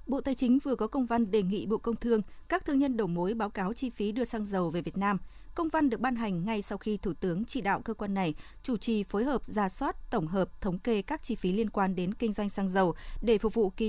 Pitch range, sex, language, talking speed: 195-245 Hz, female, Vietnamese, 285 wpm